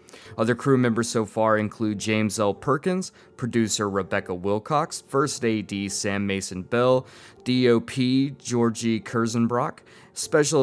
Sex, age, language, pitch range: male, 20-39, English, 105-130 Hz